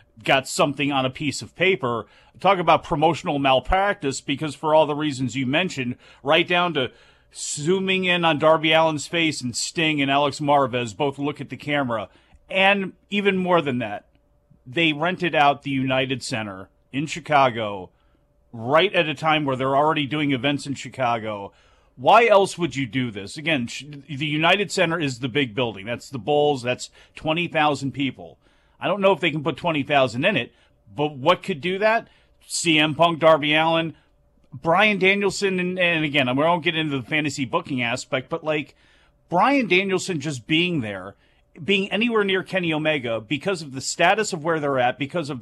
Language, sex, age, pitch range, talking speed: English, male, 40-59, 135-175 Hz, 180 wpm